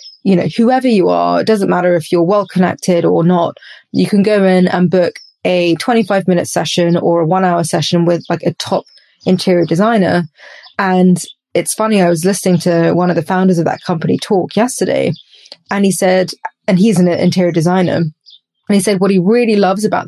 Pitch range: 170-205 Hz